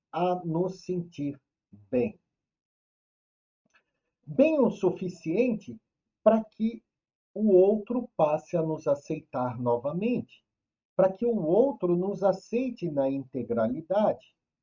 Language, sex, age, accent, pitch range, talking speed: Portuguese, male, 50-69, Brazilian, 130-205 Hz, 100 wpm